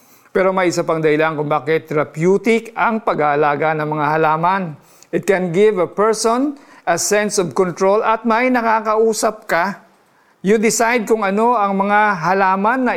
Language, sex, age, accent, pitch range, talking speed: Filipino, male, 50-69, native, 170-210 Hz, 155 wpm